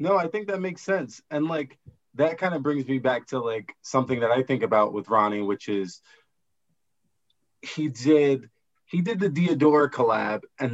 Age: 30-49